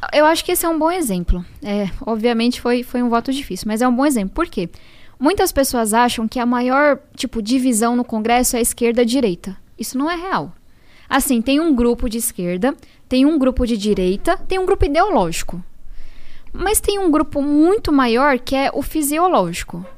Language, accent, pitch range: Portuguese, Brazilian, 235-290 Hz